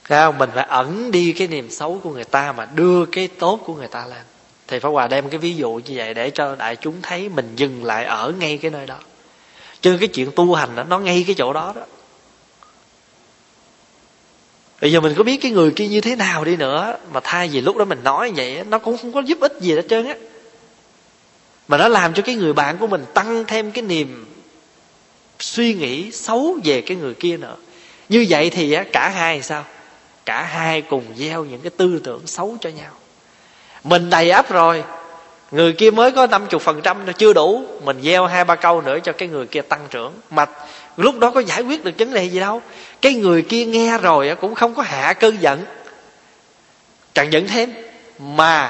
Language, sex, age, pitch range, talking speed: Vietnamese, male, 20-39, 145-220 Hz, 210 wpm